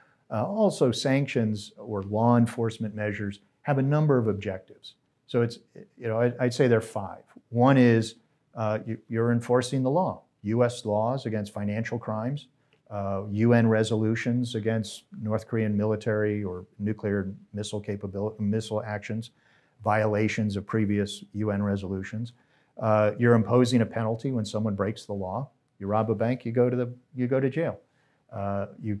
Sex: male